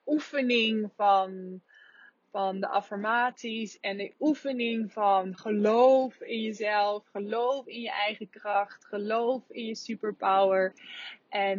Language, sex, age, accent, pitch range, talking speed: English, female, 20-39, Dutch, 195-245 Hz, 115 wpm